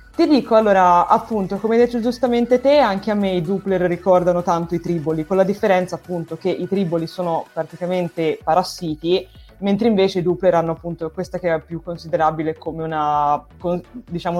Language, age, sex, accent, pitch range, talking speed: Italian, 20-39, female, native, 175-230 Hz, 175 wpm